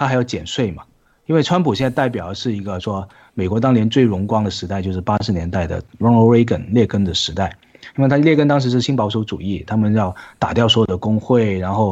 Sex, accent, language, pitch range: male, native, Chinese, 100-125 Hz